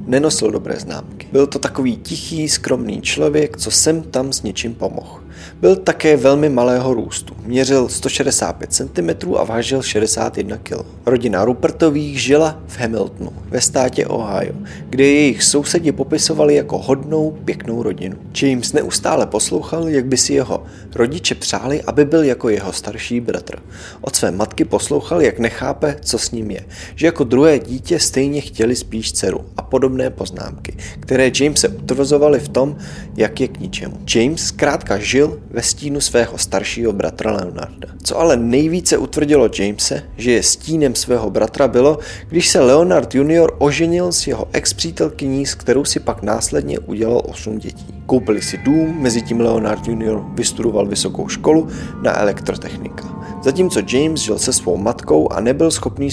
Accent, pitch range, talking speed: native, 110-150 Hz, 155 wpm